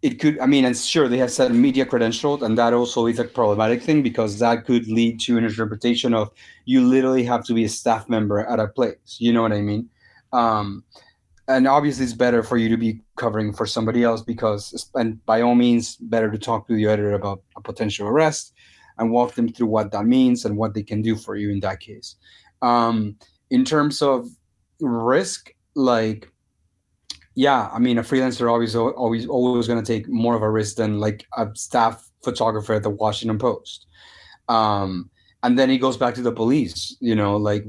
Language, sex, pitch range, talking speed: English, male, 110-125 Hz, 205 wpm